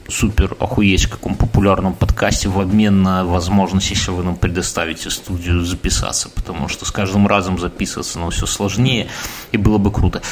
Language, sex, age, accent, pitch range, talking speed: Russian, male, 30-49, native, 100-130 Hz, 165 wpm